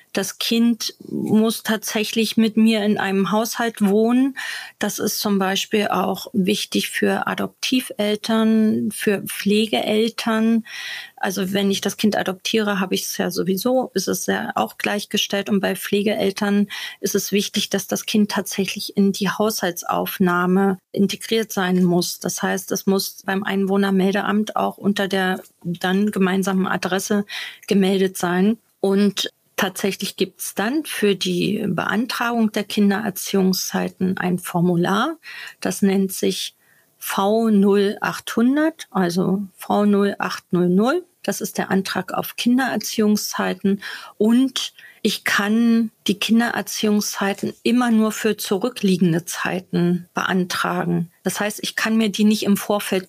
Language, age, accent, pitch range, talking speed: German, 30-49, German, 190-220 Hz, 125 wpm